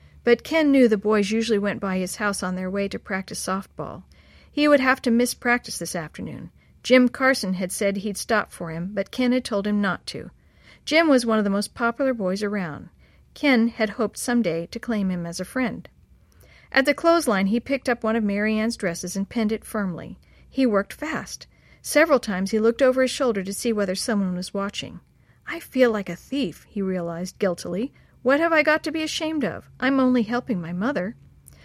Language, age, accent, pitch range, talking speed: English, 50-69, American, 195-255 Hz, 210 wpm